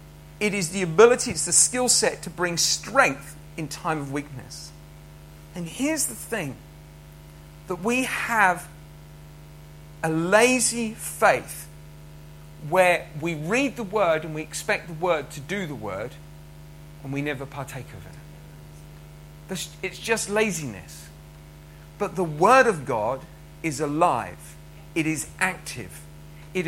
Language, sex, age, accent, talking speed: English, male, 50-69, British, 135 wpm